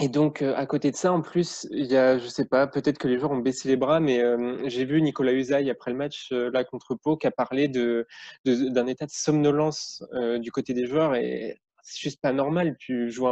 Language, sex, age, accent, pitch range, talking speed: French, male, 20-39, French, 125-145 Hz, 260 wpm